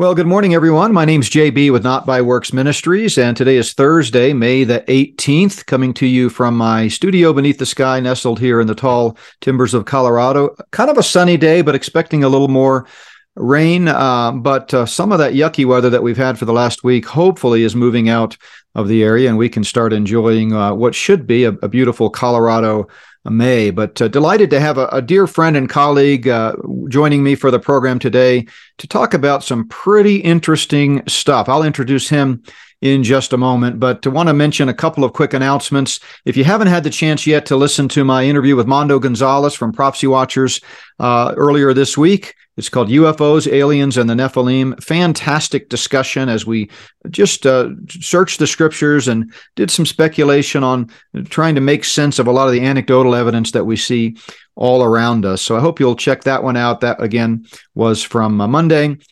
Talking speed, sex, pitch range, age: 200 wpm, male, 120-150 Hz, 40-59